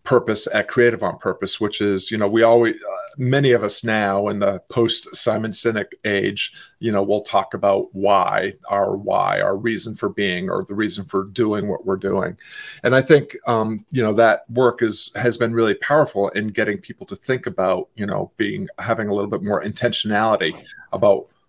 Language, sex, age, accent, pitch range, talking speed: English, male, 40-59, American, 105-120 Hz, 200 wpm